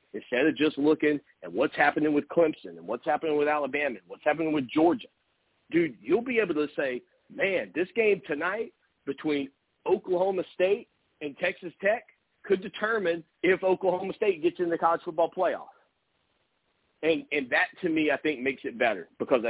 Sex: male